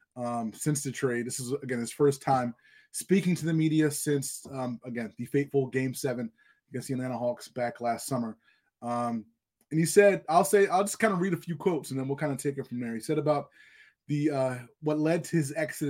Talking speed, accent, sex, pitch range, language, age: 230 wpm, American, male, 120-155 Hz, English, 20-39